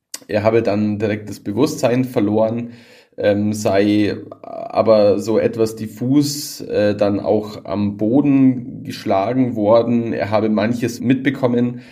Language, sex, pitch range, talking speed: German, male, 105-120 Hz, 120 wpm